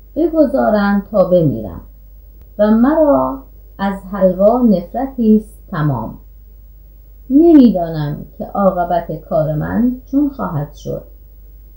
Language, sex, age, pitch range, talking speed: Persian, female, 30-49, 165-275 Hz, 85 wpm